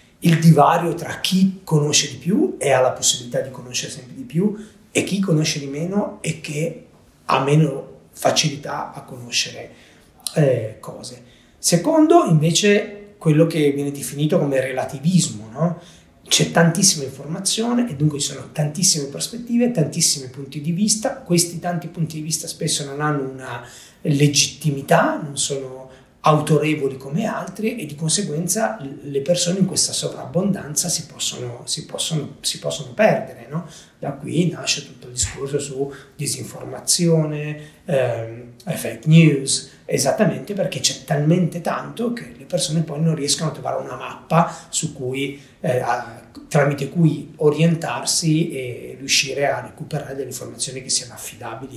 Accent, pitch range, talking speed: native, 135-170 Hz, 135 wpm